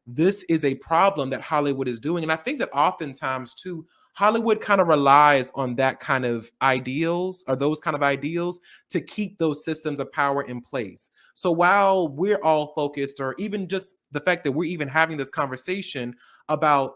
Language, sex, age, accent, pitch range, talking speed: English, male, 20-39, American, 140-180 Hz, 190 wpm